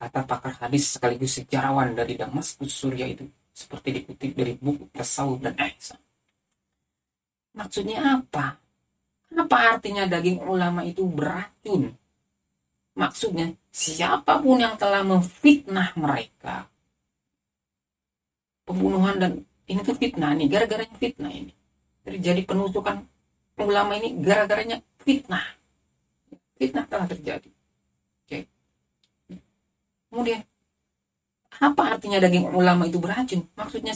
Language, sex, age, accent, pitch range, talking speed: Indonesian, female, 40-59, native, 135-200 Hz, 95 wpm